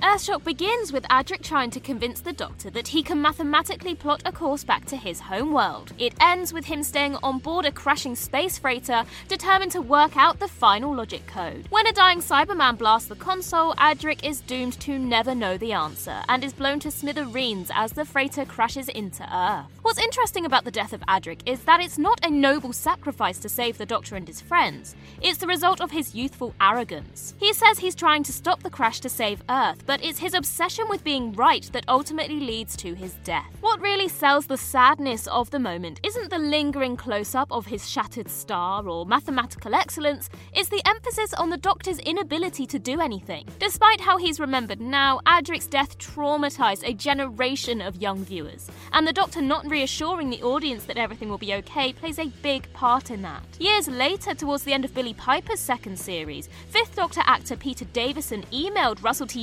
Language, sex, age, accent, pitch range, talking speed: English, female, 10-29, British, 245-345 Hz, 200 wpm